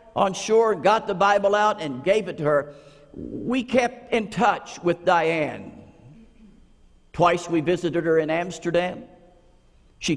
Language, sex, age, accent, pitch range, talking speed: English, male, 60-79, American, 160-225 Hz, 140 wpm